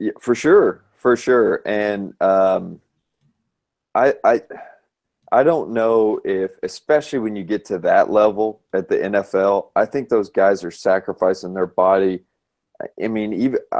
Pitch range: 95-115 Hz